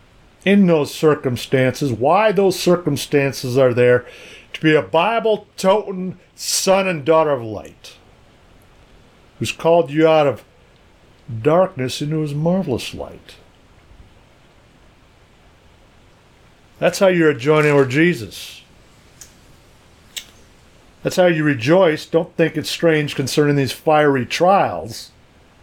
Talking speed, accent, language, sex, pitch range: 110 wpm, American, English, male, 120-175 Hz